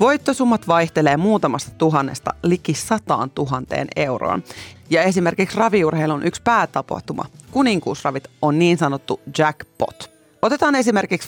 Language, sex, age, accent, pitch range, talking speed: Finnish, female, 30-49, native, 140-190 Hz, 105 wpm